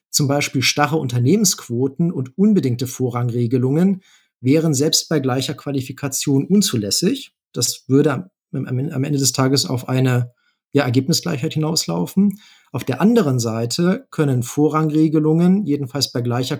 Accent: German